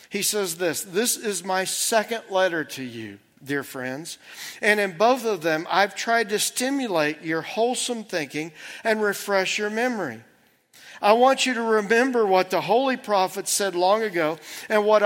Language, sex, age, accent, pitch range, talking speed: English, male, 50-69, American, 150-210 Hz, 165 wpm